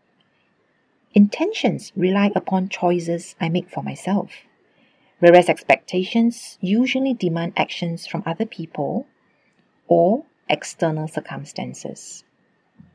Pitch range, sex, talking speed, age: 170-230 Hz, female, 90 wpm, 40-59